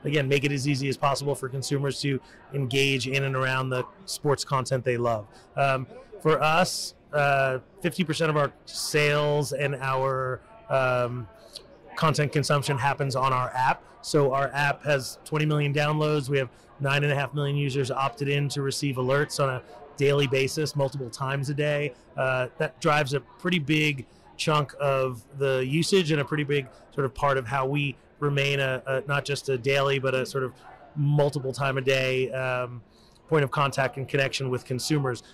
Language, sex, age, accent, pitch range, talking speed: English, male, 30-49, American, 130-145 Hz, 175 wpm